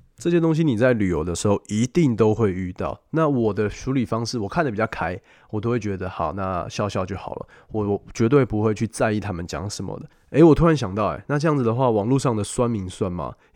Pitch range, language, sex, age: 100-130 Hz, Chinese, male, 20-39